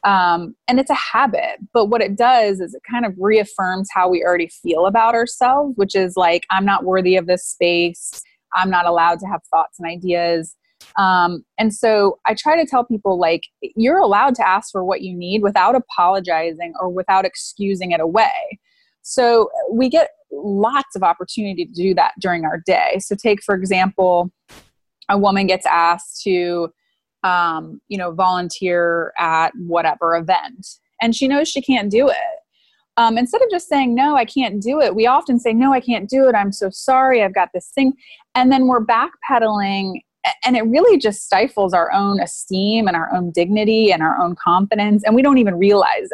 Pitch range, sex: 180-250 Hz, female